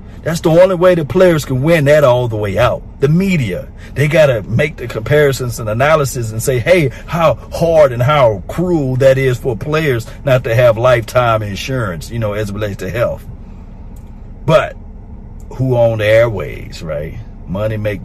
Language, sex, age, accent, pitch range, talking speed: English, male, 50-69, American, 100-125 Hz, 180 wpm